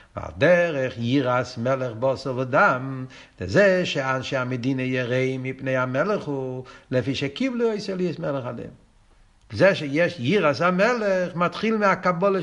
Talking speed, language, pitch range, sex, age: 115 wpm, Hebrew, 145-215 Hz, male, 60-79